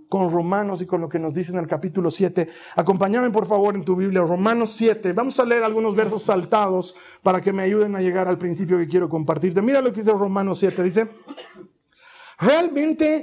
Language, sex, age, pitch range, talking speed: Spanish, male, 50-69, 185-300 Hz, 205 wpm